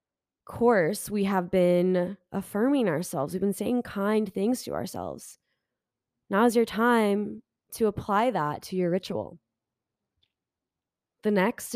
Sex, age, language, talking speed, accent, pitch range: female, 20-39, English, 130 wpm, American, 175-220 Hz